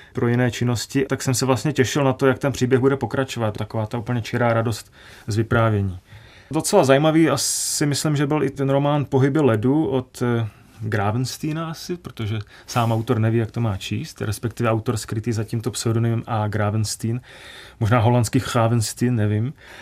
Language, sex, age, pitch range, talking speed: Czech, male, 30-49, 110-130 Hz, 170 wpm